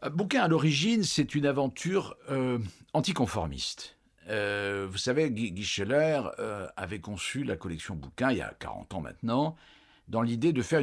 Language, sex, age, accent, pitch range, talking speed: French, male, 50-69, French, 100-150 Hz, 165 wpm